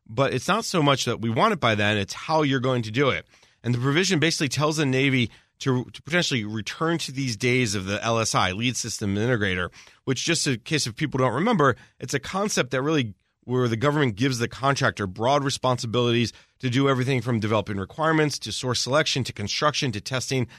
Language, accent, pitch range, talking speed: English, American, 115-150 Hz, 205 wpm